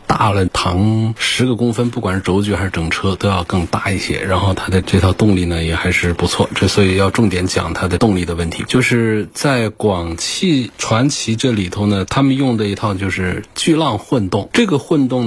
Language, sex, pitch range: Chinese, male, 90-115 Hz